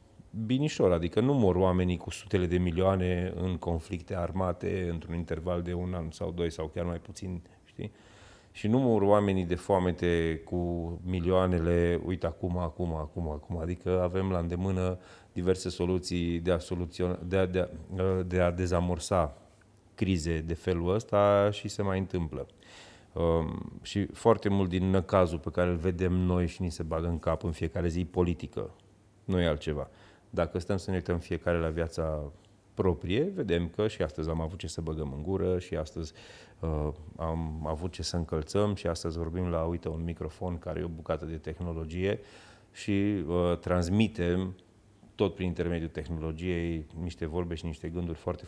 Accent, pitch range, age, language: native, 85-95 Hz, 30-49, Romanian